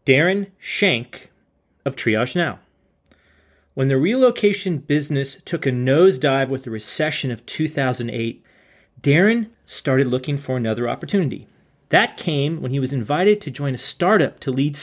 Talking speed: 140 wpm